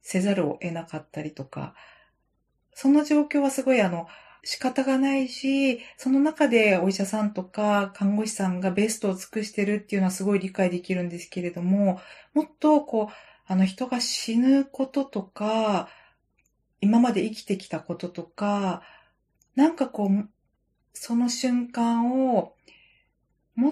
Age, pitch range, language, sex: 40-59, 185-255 Hz, Japanese, female